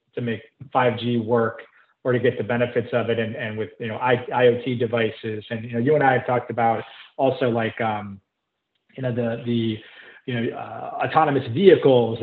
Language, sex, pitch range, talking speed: English, male, 115-140 Hz, 195 wpm